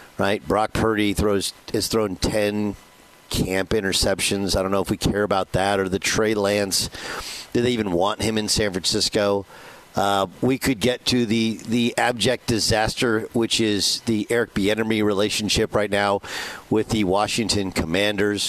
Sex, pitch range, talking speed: male, 100-125 Hz, 160 wpm